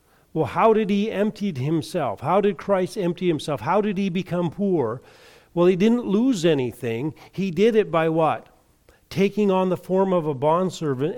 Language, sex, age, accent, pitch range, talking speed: English, male, 50-69, American, 150-185 Hz, 175 wpm